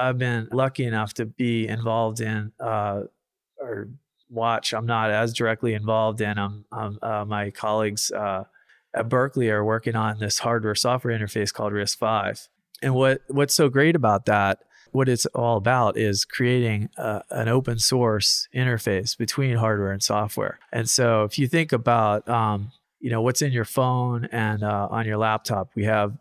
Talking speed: 175 wpm